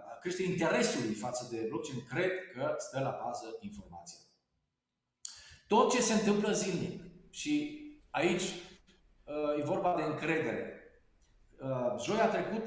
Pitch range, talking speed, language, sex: 135-195 Hz, 110 wpm, Romanian, male